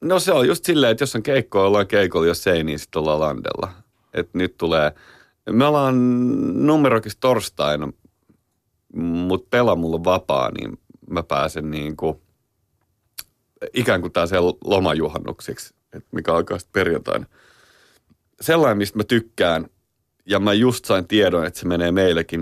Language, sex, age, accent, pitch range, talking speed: Finnish, male, 30-49, native, 80-110 Hz, 140 wpm